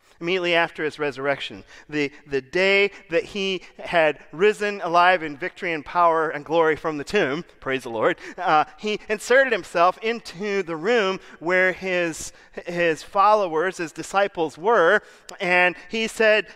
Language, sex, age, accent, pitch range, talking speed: English, male, 40-59, American, 150-200 Hz, 150 wpm